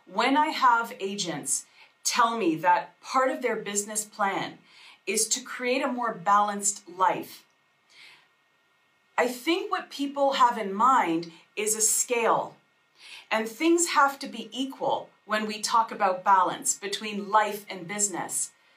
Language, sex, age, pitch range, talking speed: English, female, 40-59, 210-275 Hz, 140 wpm